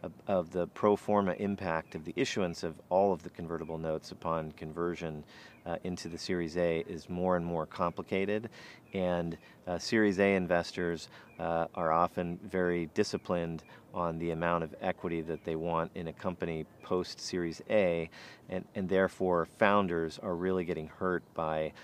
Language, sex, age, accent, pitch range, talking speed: English, male, 40-59, American, 80-95 Hz, 155 wpm